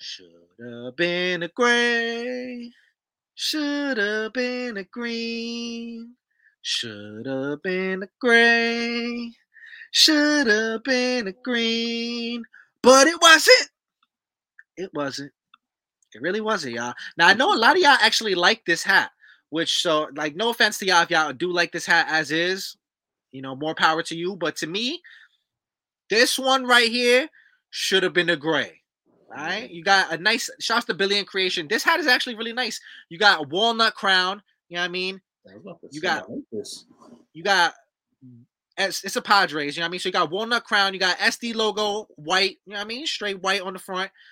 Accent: American